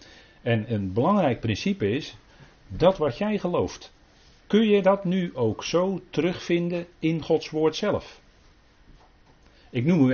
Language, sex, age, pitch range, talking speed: Dutch, male, 40-59, 105-155 Hz, 135 wpm